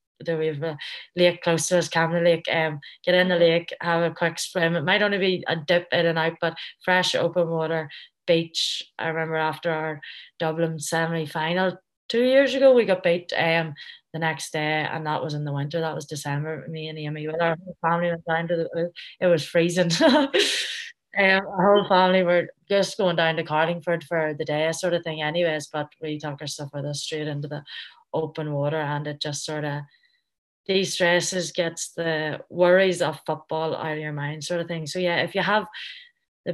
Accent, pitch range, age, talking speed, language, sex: Irish, 155-175 Hz, 20-39, 205 wpm, English, female